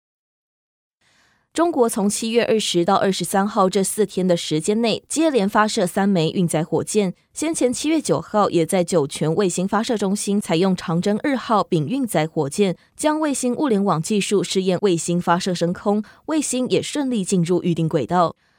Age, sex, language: 20-39, female, Chinese